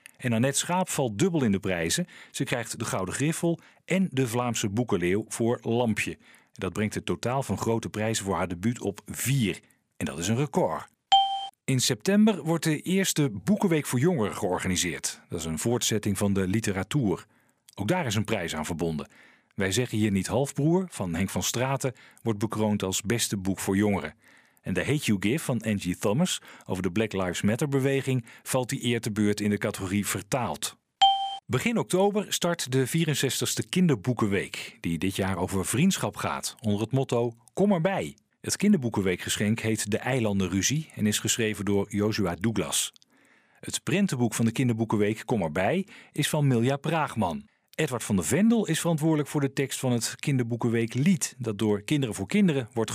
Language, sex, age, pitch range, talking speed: Dutch, male, 40-59, 105-150 Hz, 175 wpm